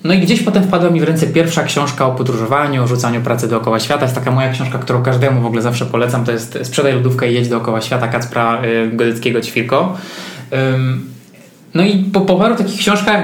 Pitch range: 120-145 Hz